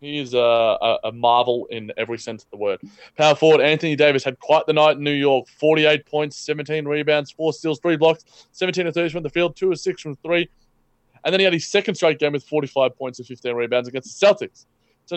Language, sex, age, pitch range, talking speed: English, male, 20-39, 125-155 Hz, 235 wpm